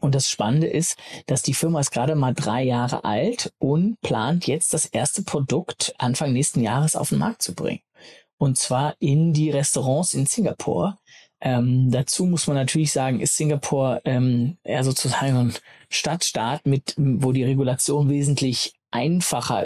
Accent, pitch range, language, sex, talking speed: German, 125-155 Hz, German, male, 160 wpm